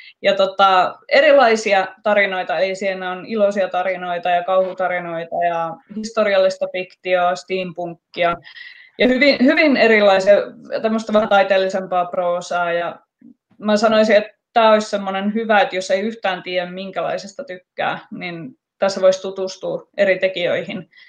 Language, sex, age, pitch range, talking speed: Finnish, female, 20-39, 185-235 Hz, 125 wpm